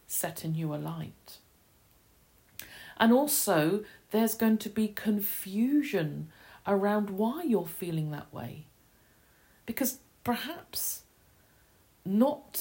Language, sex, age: English, female, 40-59